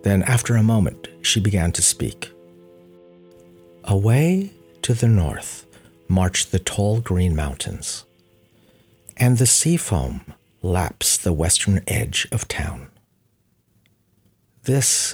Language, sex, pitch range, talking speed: English, male, 95-115 Hz, 110 wpm